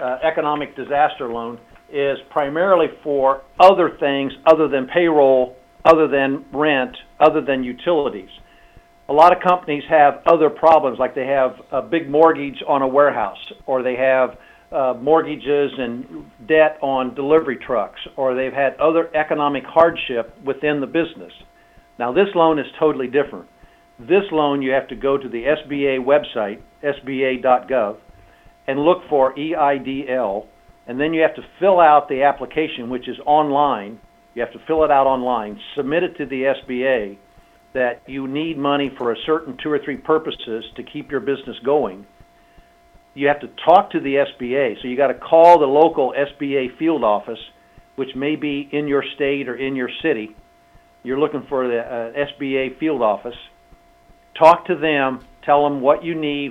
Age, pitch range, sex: 50-69, 130-155 Hz, male